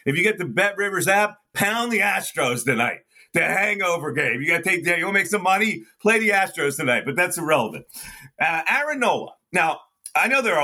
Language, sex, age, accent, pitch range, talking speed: English, male, 40-59, American, 130-195 Hz, 220 wpm